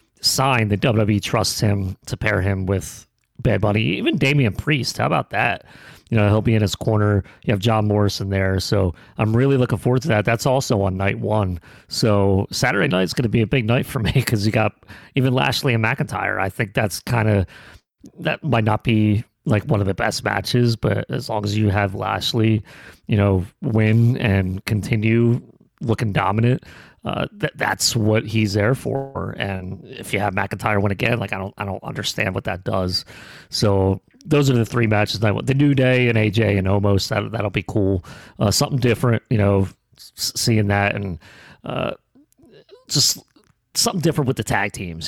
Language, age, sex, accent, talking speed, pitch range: English, 30-49, male, American, 195 wpm, 100-120 Hz